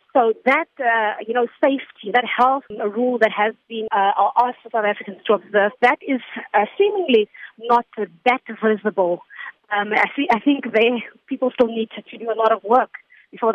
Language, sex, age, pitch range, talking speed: English, female, 30-49, 210-245 Hz, 190 wpm